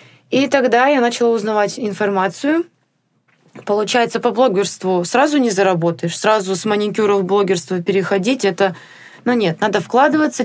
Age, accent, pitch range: 20-39, native, 195-260 Hz